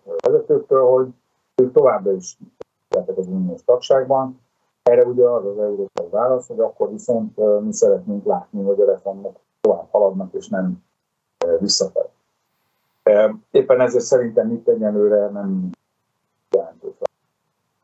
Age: 60-79